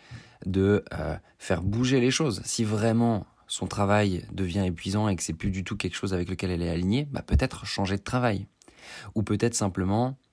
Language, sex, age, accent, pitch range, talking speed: French, male, 20-39, French, 90-110 Hz, 190 wpm